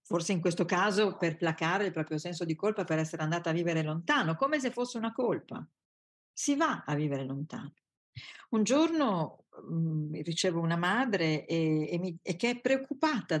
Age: 50-69